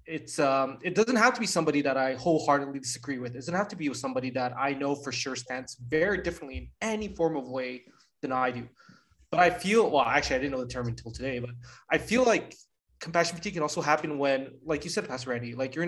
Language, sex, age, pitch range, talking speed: English, male, 20-39, 130-170 Hz, 245 wpm